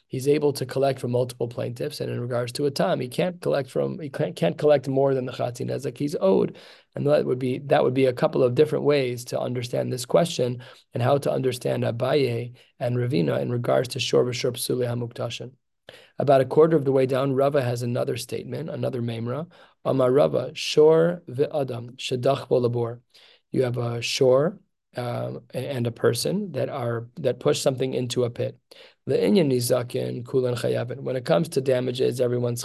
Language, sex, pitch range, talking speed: English, male, 120-135 Hz, 175 wpm